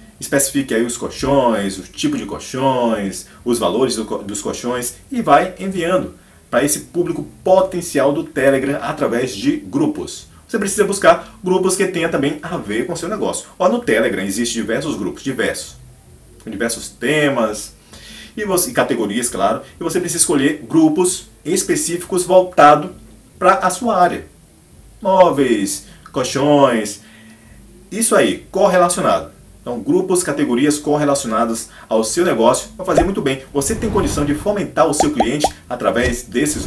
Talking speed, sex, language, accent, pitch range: 145 wpm, male, Portuguese, Brazilian, 125-185 Hz